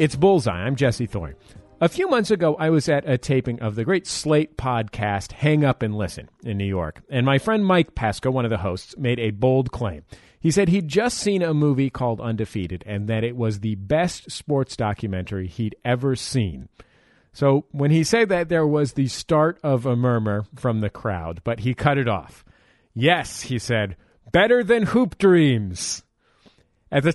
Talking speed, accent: 195 wpm, American